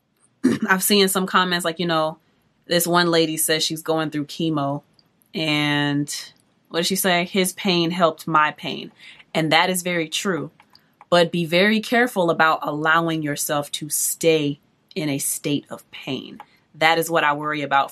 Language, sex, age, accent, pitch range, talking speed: English, female, 20-39, American, 155-195 Hz, 165 wpm